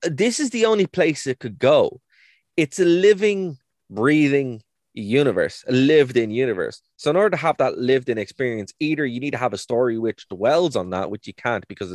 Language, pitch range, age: English, 105-145 Hz, 20-39